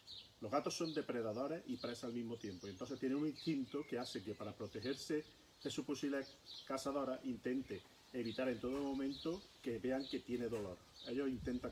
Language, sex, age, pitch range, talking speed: Spanish, male, 40-59, 115-140 Hz, 175 wpm